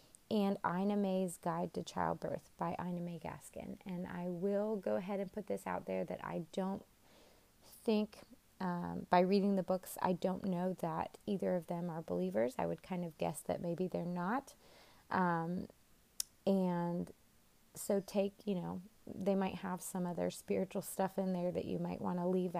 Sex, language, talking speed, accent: female, English, 180 wpm, American